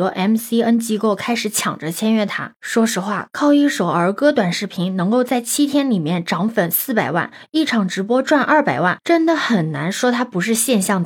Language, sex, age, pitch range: Chinese, female, 20-39, 190-250 Hz